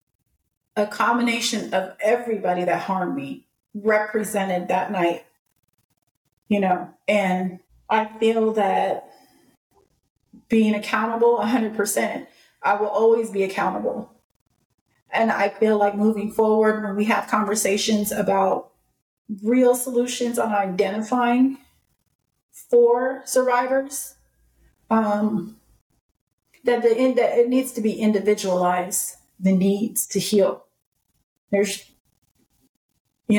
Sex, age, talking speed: female, 30-49, 100 wpm